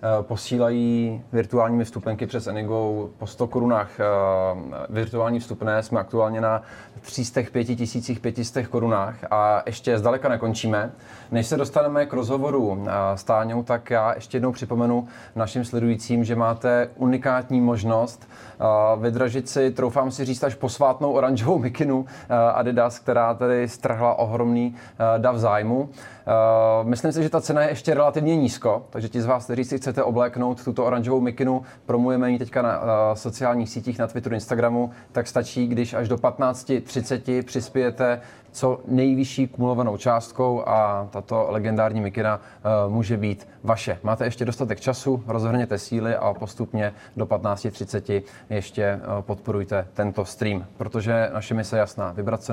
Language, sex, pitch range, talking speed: Czech, male, 110-125 Hz, 145 wpm